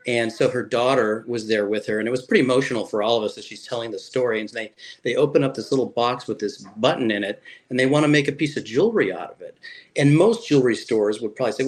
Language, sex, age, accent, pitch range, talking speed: English, male, 40-59, American, 110-145 Hz, 275 wpm